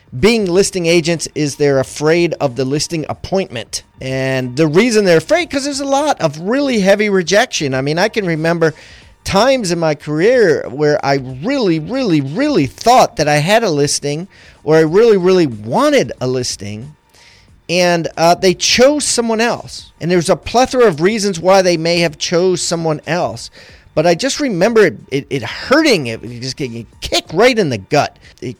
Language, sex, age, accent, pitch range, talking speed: English, male, 40-59, American, 130-220 Hz, 180 wpm